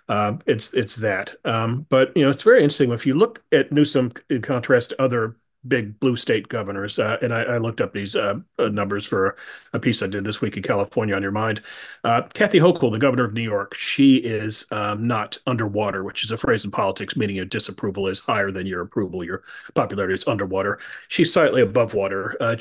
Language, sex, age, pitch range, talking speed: English, male, 40-59, 110-140 Hz, 215 wpm